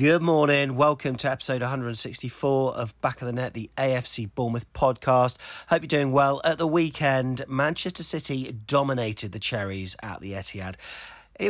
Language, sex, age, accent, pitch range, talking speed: English, male, 40-59, British, 115-160 Hz, 160 wpm